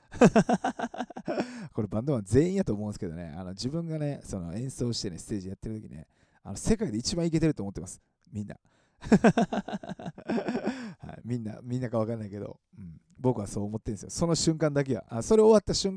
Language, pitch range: Japanese, 95-150 Hz